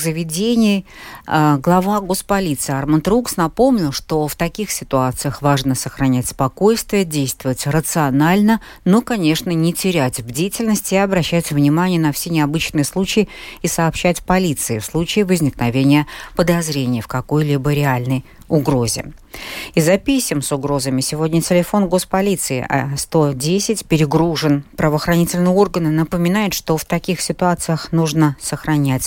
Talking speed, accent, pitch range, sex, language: 120 wpm, native, 150-190 Hz, female, Russian